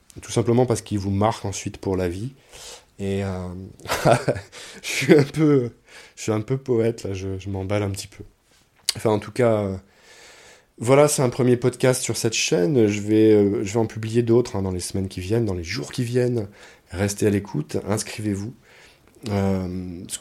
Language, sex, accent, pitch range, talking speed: French, male, French, 95-120 Hz, 195 wpm